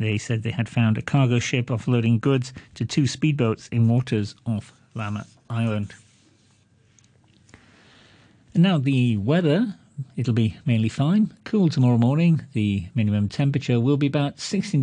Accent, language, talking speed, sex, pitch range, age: British, English, 145 wpm, male, 110-140 Hz, 40-59